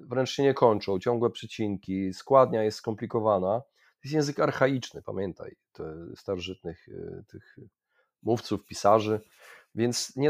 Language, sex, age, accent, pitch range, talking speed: Polish, male, 30-49, native, 100-120 Hz, 115 wpm